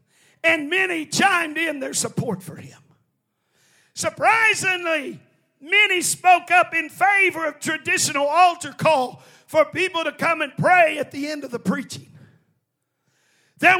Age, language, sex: 50-69, English, male